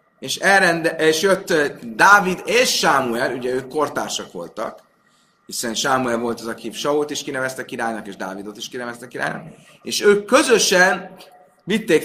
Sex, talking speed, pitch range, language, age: male, 145 wpm, 125-165 Hz, Hungarian, 30-49